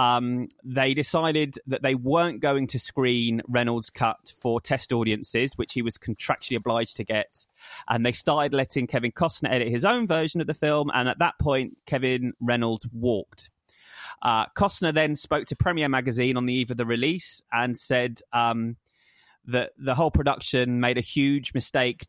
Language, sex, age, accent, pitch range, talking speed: English, male, 20-39, British, 120-145 Hz, 175 wpm